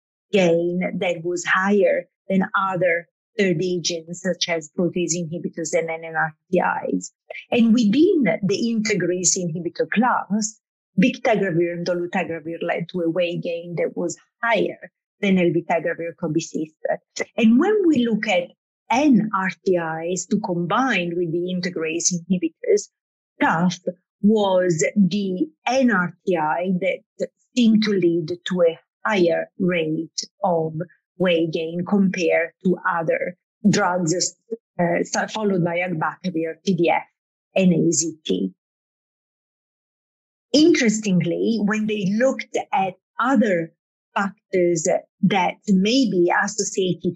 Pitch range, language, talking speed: 170-210 Hz, English, 105 wpm